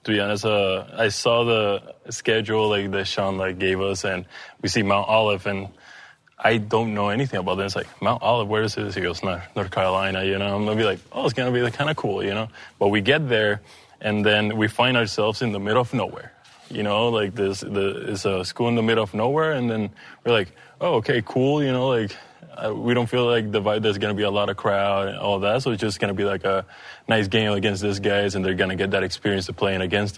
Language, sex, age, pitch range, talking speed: English, male, 20-39, 100-115 Hz, 255 wpm